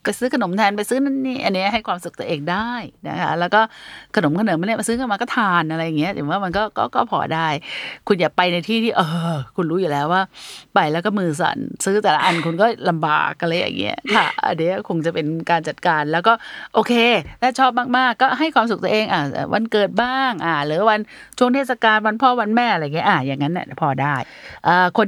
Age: 30-49